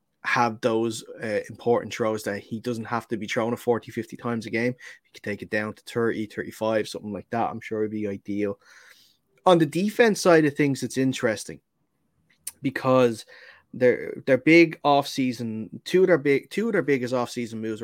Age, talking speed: 20-39, 200 wpm